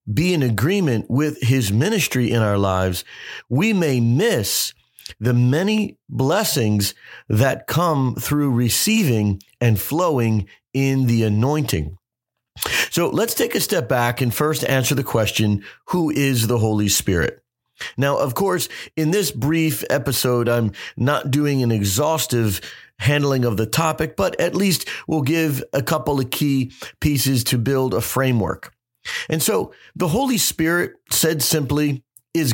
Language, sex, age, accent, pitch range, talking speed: English, male, 40-59, American, 120-150 Hz, 145 wpm